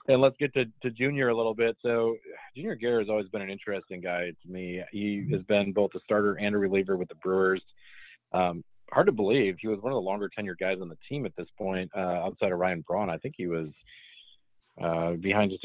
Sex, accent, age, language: male, American, 40-59, English